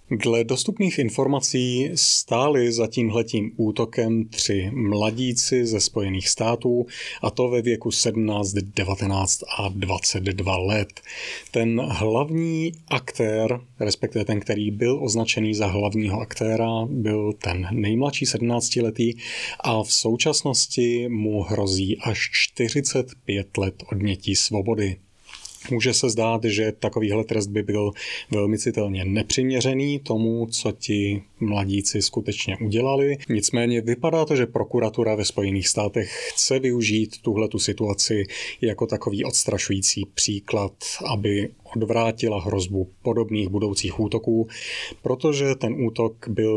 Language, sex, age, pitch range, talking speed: Czech, male, 30-49, 100-120 Hz, 115 wpm